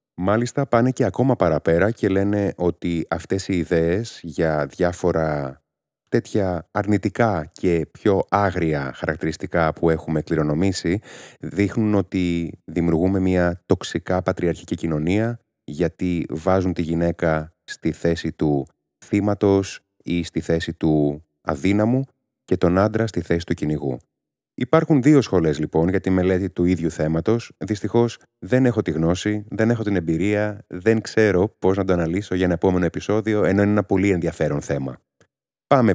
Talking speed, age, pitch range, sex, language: 140 wpm, 30-49, 85-110 Hz, male, Greek